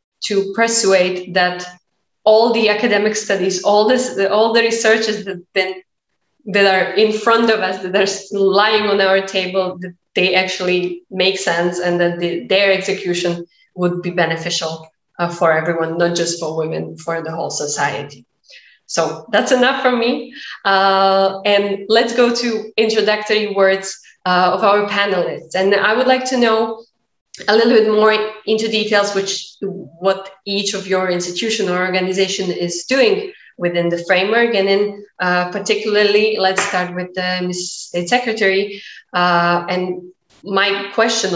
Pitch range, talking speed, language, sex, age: 180-215 Hz, 150 wpm, Slovak, female, 20-39